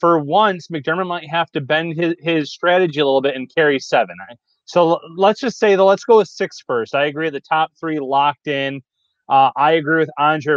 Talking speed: 215 wpm